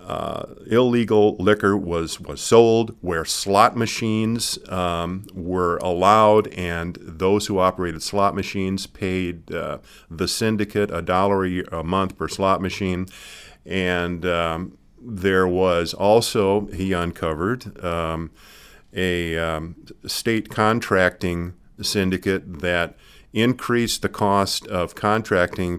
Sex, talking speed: male, 110 wpm